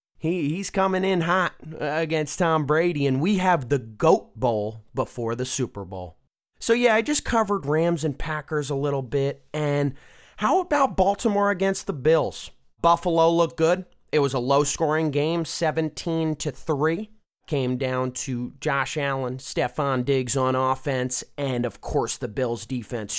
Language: English